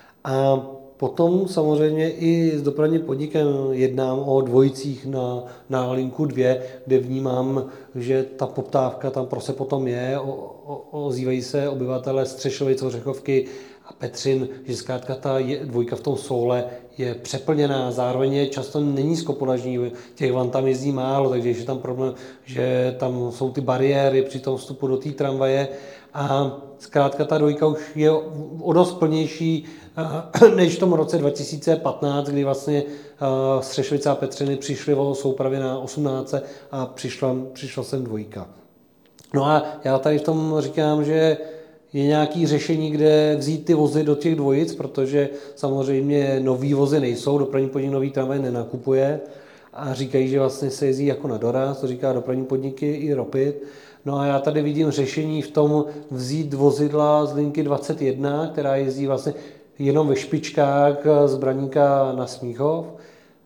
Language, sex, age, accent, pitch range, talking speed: Czech, male, 40-59, native, 130-150 Hz, 150 wpm